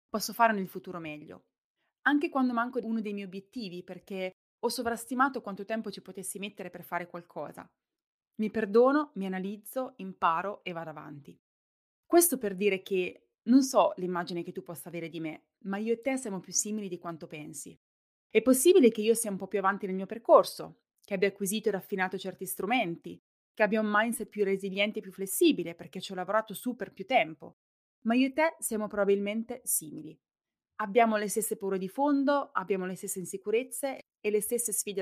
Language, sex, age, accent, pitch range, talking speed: Italian, female, 20-39, native, 180-230 Hz, 190 wpm